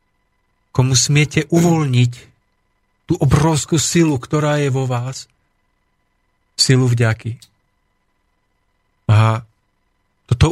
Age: 50-69